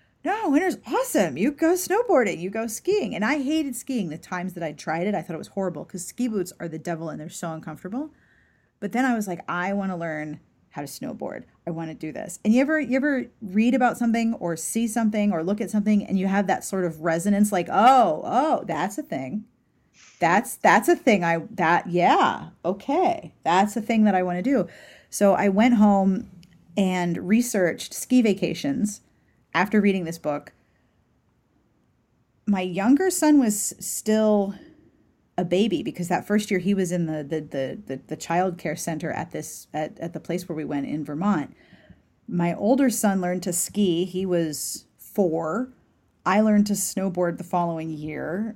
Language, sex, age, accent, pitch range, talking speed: English, female, 30-49, American, 170-225 Hz, 190 wpm